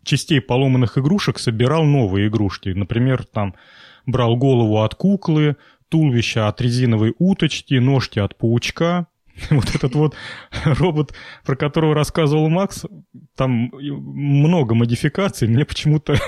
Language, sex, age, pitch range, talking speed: Russian, male, 30-49, 115-150 Hz, 120 wpm